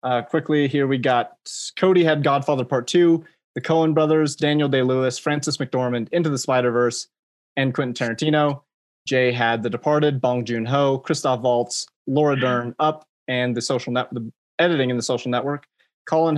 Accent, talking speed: American, 165 wpm